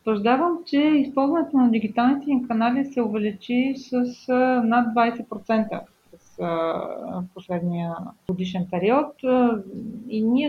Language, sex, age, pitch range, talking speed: Bulgarian, female, 30-49, 205-250 Hz, 105 wpm